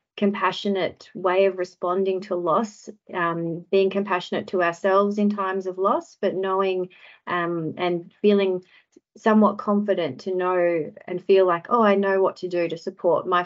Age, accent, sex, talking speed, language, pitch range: 30-49, Australian, female, 160 wpm, English, 175-200 Hz